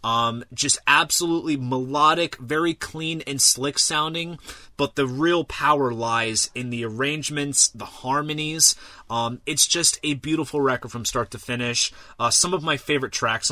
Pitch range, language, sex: 105-140 Hz, English, male